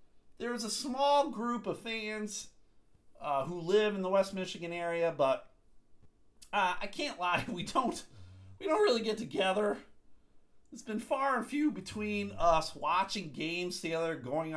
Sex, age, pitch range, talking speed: male, 50-69, 140-225 Hz, 150 wpm